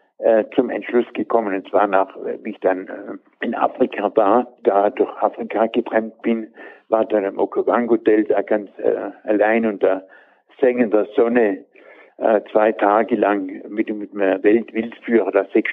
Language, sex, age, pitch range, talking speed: German, male, 60-79, 105-125 Hz, 140 wpm